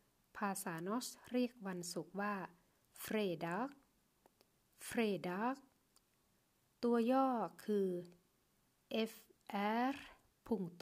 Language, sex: Thai, female